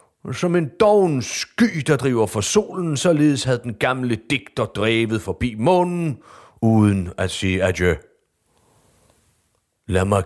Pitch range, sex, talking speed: 95-145 Hz, male, 130 wpm